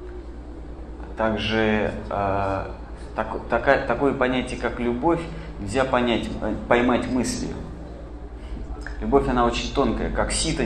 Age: 30-49